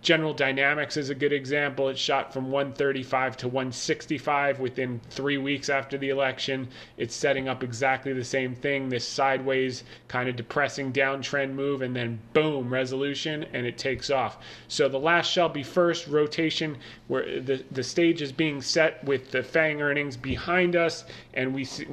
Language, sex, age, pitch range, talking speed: English, male, 30-49, 130-160 Hz, 170 wpm